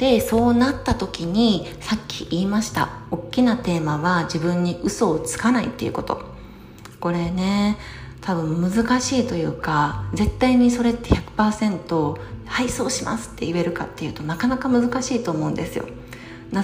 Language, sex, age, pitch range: Japanese, female, 40-59, 165-230 Hz